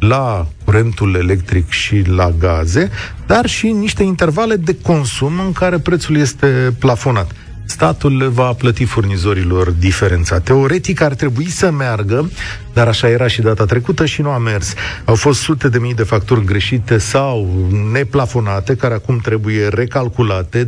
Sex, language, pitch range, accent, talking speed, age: male, Romanian, 105-140 Hz, native, 150 wpm, 40-59